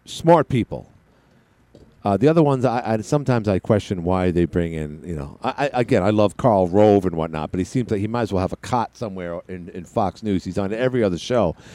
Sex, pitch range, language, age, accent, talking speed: male, 105-145 Hz, English, 50-69, American, 240 wpm